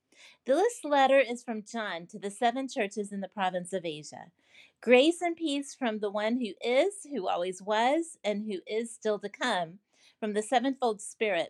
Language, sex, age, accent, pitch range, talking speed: English, female, 40-59, American, 205-280 Hz, 185 wpm